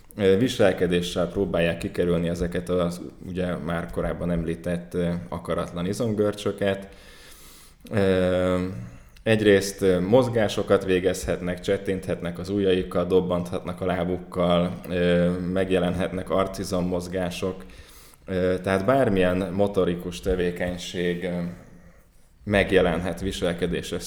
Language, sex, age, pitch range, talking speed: Hungarian, male, 20-39, 90-95 Hz, 70 wpm